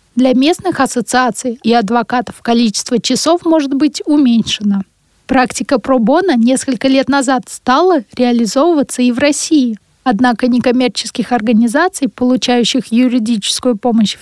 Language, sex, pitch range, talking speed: Russian, female, 225-265 Hz, 110 wpm